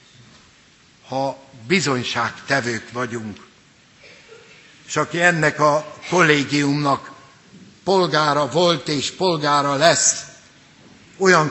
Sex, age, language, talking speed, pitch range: male, 60-79, Hungarian, 75 wpm, 140-170 Hz